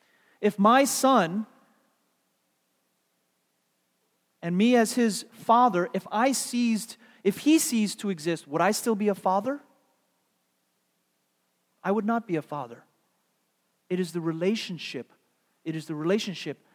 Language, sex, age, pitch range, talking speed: English, male, 30-49, 135-195 Hz, 130 wpm